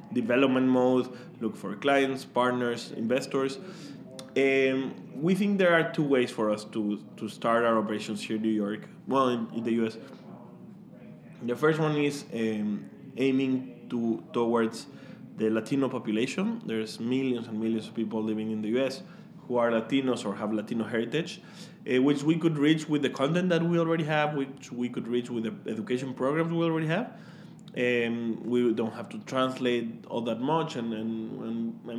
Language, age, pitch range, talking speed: English, 20-39, 115-145 Hz, 175 wpm